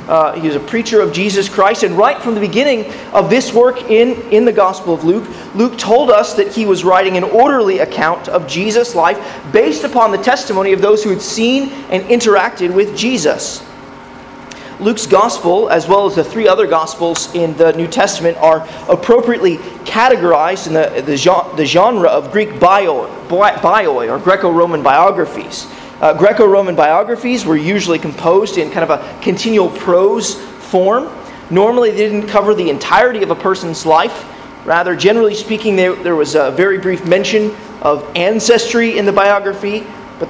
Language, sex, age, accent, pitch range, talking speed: English, male, 30-49, American, 170-220 Hz, 170 wpm